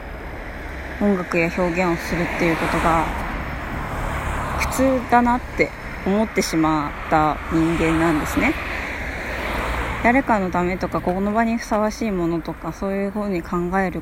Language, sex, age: Japanese, female, 20-39